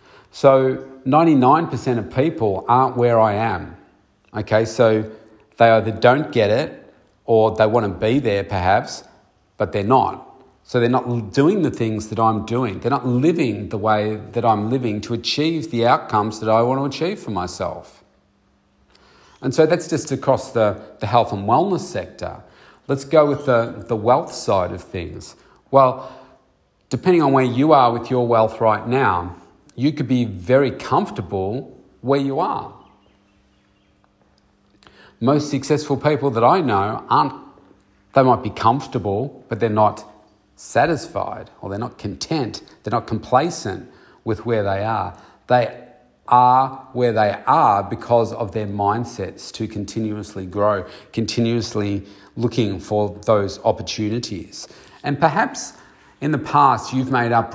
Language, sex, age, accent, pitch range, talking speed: English, male, 40-59, Australian, 105-130 Hz, 150 wpm